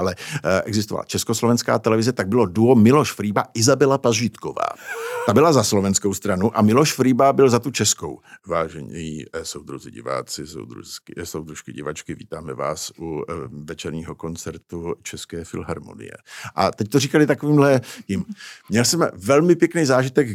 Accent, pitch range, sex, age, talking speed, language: native, 105-140 Hz, male, 60-79, 135 wpm, Czech